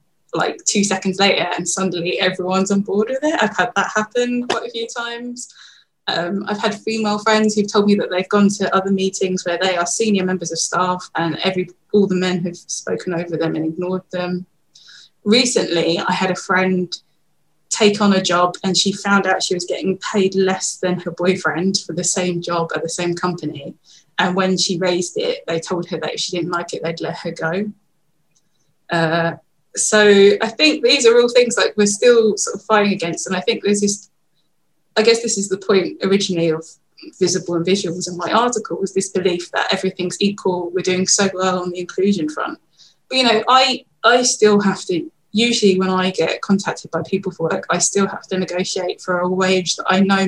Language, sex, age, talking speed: English, female, 20-39, 210 wpm